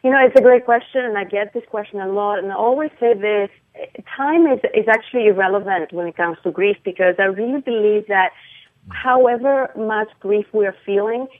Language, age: English, 30-49